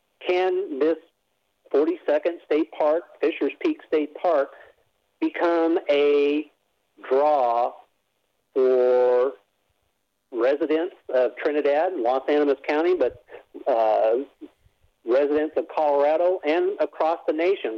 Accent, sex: American, male